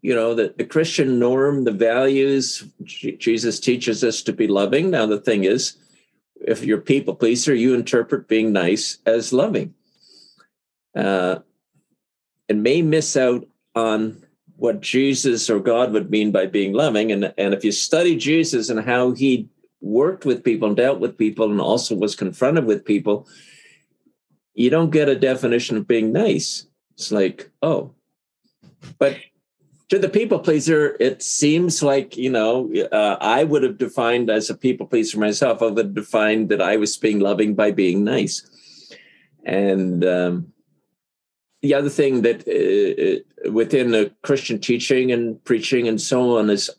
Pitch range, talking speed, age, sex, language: 105-135 Hz, 160 wpm, 50-69, male, English